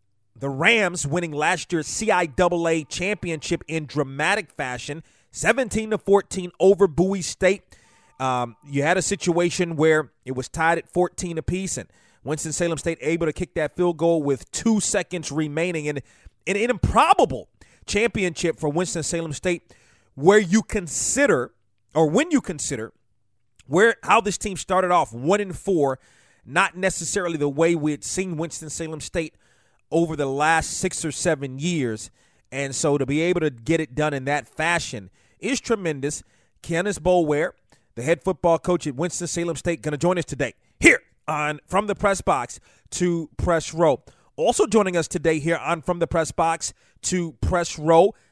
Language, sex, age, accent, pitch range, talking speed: English, male, 30-49, American, 145-180 Hz, 160 wpm